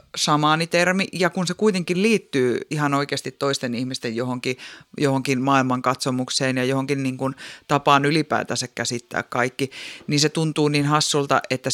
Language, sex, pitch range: Finnish, female, 130-150 Hz